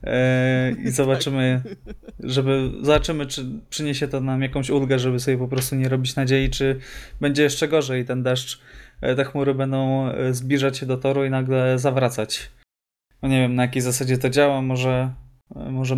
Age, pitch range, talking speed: 20-39, 125-140 Hz, 155 wpm